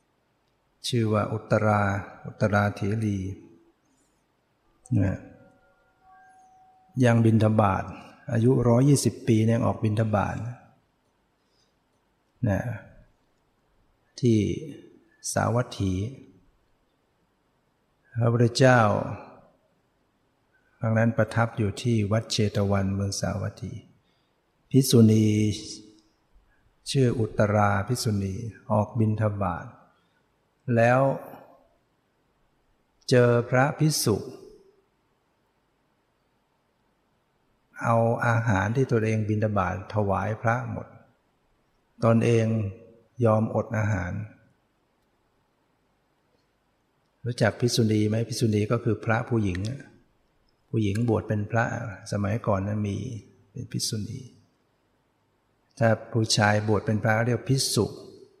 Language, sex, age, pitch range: English, male, 60-79, 105-120 Hz